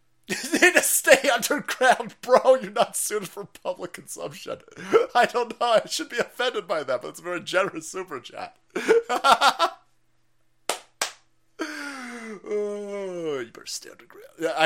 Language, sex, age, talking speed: English, male, 30-49, 135 wpm